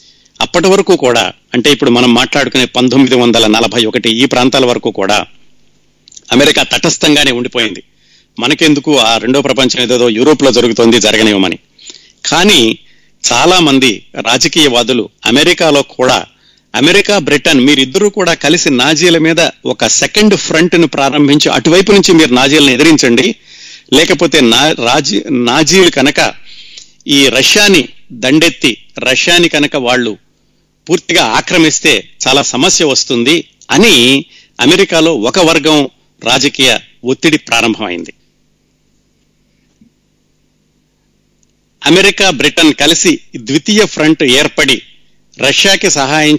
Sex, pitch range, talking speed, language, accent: male, 125-160 Hz, 95 wpm, Telugu, native